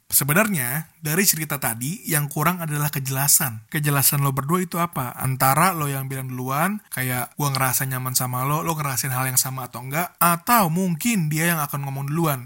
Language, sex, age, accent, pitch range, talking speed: Indonesian, male, 20-39, native, 140-190 Hz, 185 wpm